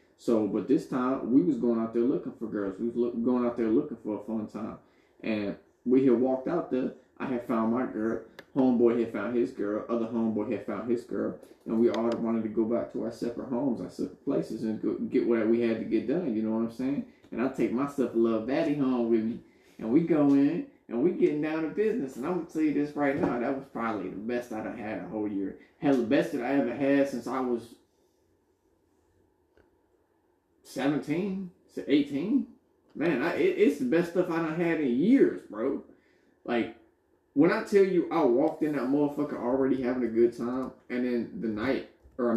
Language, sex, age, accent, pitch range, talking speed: English, male, 20-39, American, 115-195 Hz, 225 wpm